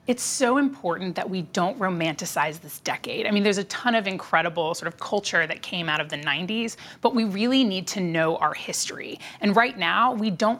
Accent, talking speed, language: American, 215 wpm, English